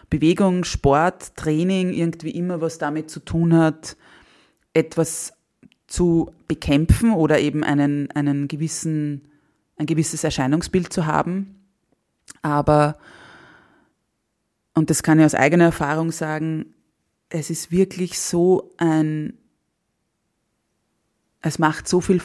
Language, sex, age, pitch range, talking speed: German, female, 20-39, 150-165 Hz, 110 wpm